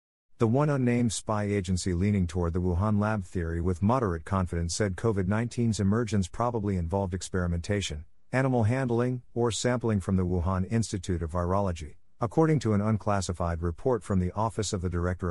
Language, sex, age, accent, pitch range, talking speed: English, male, 50-69, American, 85-110 Hz, 160 wpm